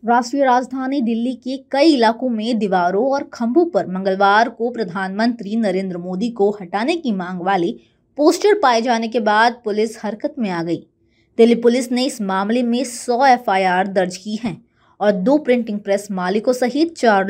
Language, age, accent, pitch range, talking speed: Hindi, 20-39, native, 190-255 Hz, 170 wpm